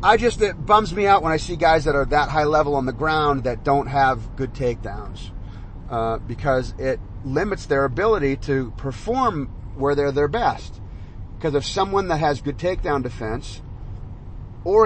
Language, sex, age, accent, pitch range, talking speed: English, male, 30-49, American, 115-160 Hz, 180 wpm